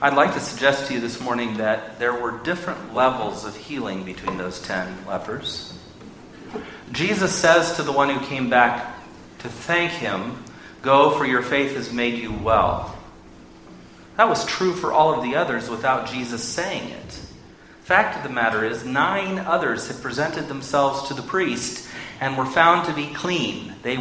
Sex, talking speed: male, 175 wpm